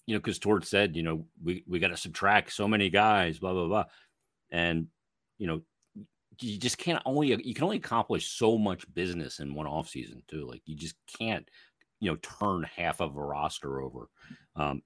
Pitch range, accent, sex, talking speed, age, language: 75-95 Hz, American, male, 195 wpm, 40-59, English